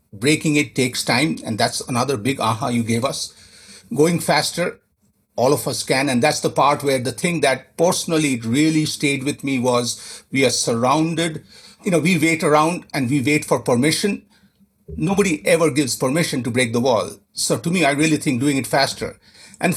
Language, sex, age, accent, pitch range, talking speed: English, male, 50-69, Indian, 120-155 Hz, 190 wpm